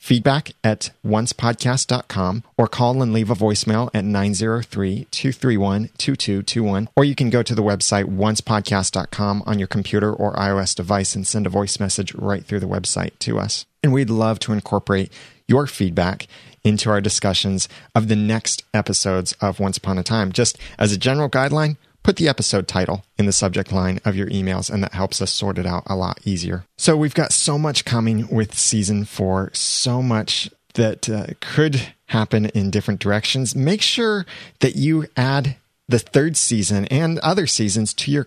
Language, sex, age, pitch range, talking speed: English, male, 30-49, 100-120 Hz, 180 wpm